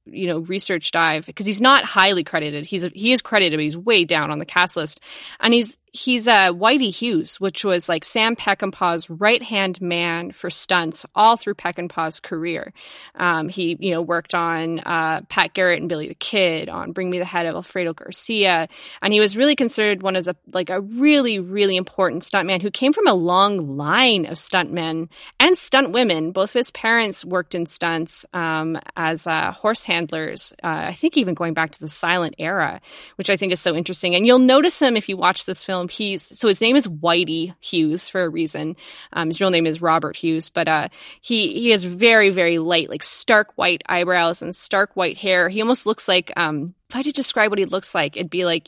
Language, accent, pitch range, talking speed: English, American, 170-210 Hz, 210 wpm